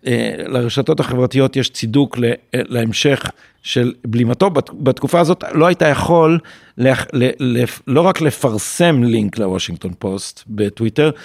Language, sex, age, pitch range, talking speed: Hebrew, male, 50-69, 115-140 Hz, 100 wpm